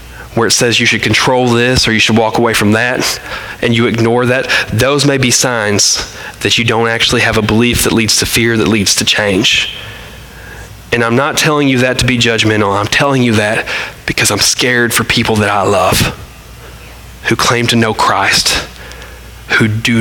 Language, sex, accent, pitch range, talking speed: English, male, American, 110-140 Hz, 195 wpm